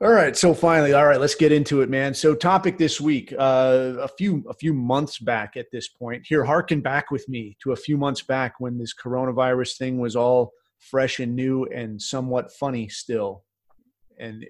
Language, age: English, 30-49